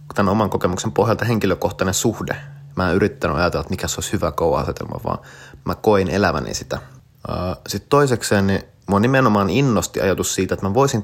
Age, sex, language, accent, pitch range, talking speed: 30-49, male, Finnish, native, 90-105 Hz, 180 wpm